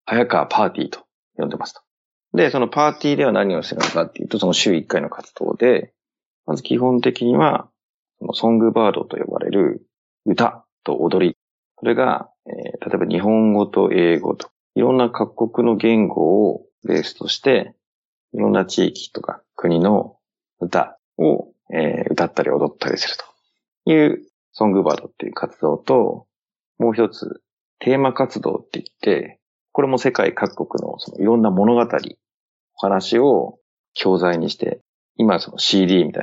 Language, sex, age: Japanese, male, 40-59